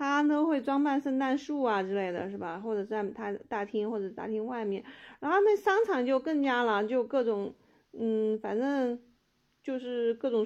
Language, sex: Chinese, female